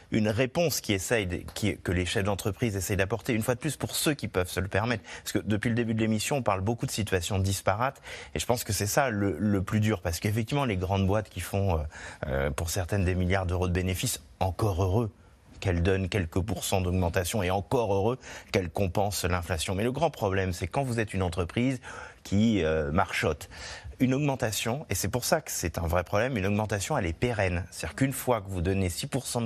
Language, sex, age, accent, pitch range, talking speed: French, male, 30-49, French, 90-120 Hz, 225 wpm